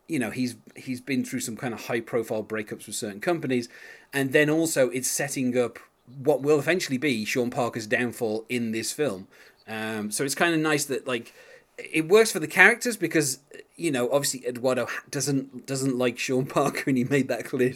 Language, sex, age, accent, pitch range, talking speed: English, male, 30-49, British, 115-145 Hz, 195 wpm